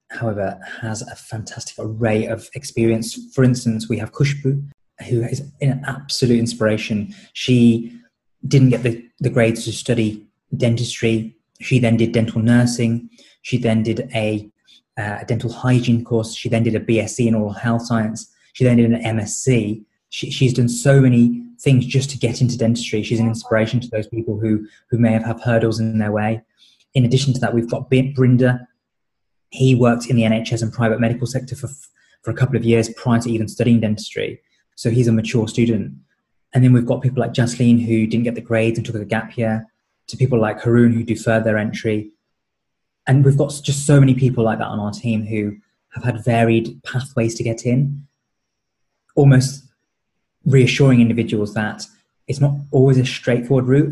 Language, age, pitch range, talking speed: English, 20-39, 110-125 Hz, 185 wpm